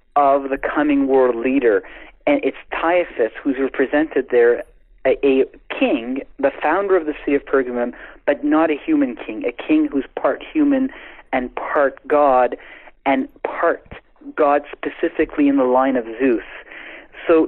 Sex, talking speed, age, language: male, 150 wpm, 40-59, English